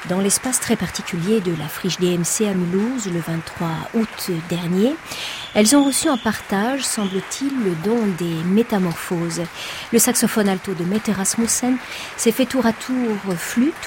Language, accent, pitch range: French, French, 180-235 Hz